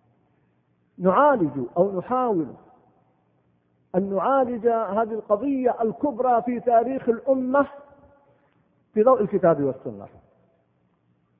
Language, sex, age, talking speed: Arabic, male, 50-69, 80 wpm